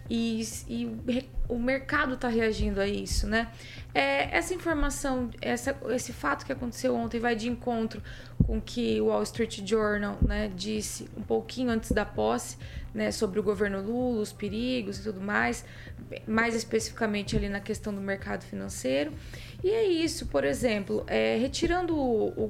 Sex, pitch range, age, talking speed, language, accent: female, 205-260 Hz, 20-39, 165 wpm, Portuguese, Brazilian